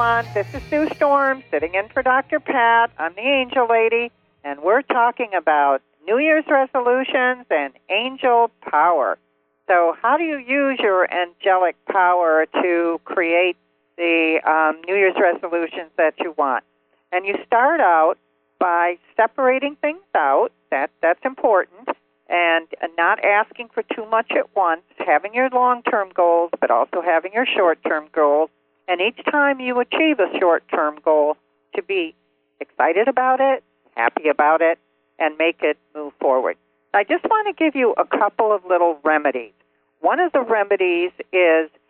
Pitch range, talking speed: 155-245 Hz, 155 wpm